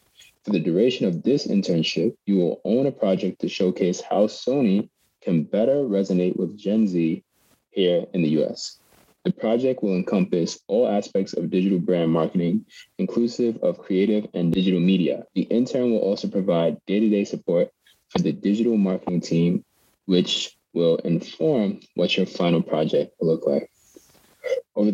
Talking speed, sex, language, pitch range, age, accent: 155 wpm, male, English, 90-105 Hz, 20-39, American